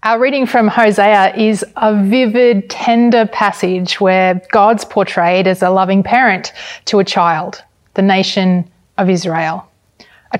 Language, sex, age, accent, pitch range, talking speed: English, female, 30-49, Australian, 180-230 Hz, 140 wpm